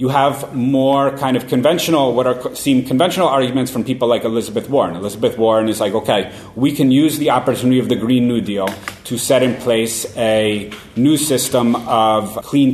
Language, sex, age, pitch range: English, male, 30-49, 115-135 Hz